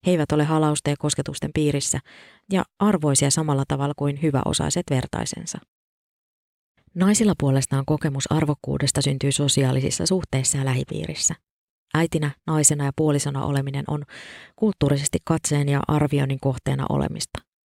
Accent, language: native, Finnish